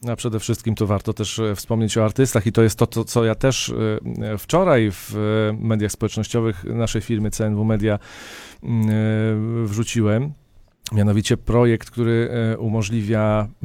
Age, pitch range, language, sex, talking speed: 40-59, 105-120 Hz, Polish, male, 130 wpm